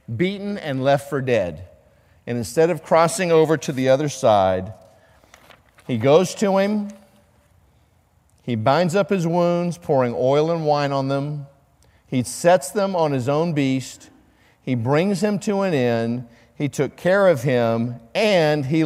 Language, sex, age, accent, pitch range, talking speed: English, male, 50-69, American, 115-150 Hz, 155 wpm